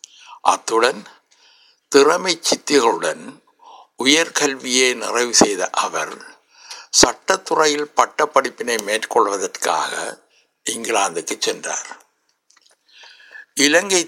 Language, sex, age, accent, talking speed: Tamil, male, 60-79, native, 55 wpm